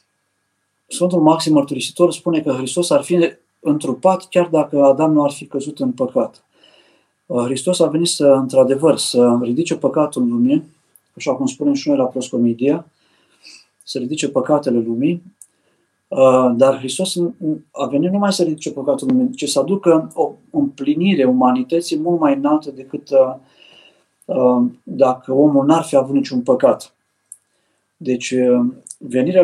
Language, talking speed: Romanian, 135 wpm